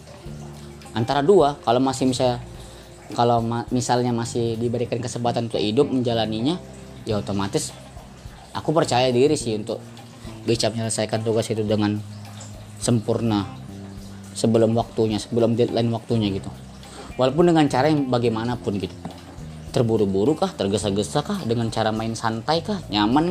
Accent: native